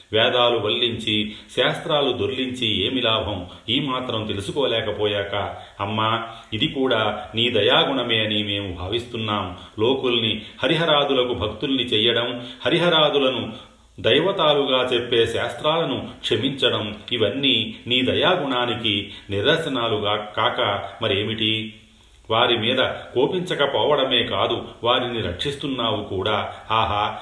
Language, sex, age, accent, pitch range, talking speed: Telugu, male, 40-59, native, 105-125 Hz, 85 wpm